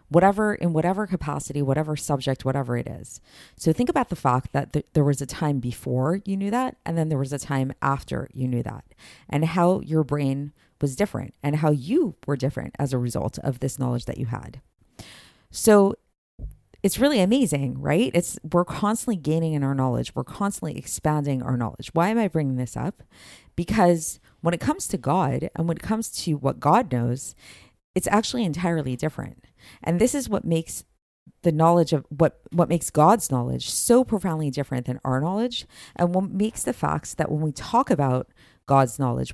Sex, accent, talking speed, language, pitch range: female, American, 190 wpm, English, 135-185 Hz